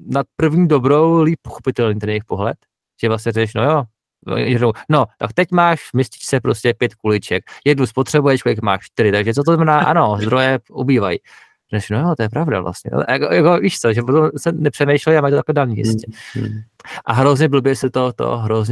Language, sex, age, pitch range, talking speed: Czech, male, 20-39, 120-150 Hz, 190 wpm